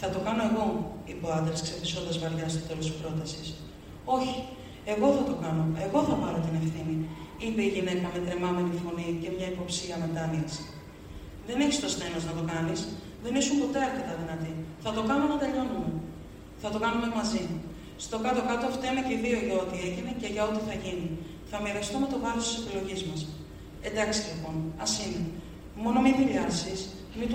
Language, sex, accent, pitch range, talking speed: Greek, female, native, 165-215 Hz, 180 wpm